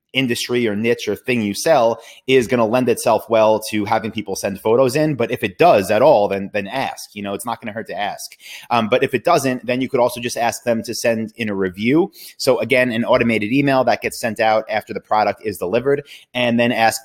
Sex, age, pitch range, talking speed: male, 30-49, 110-125 Hz, 250 wpm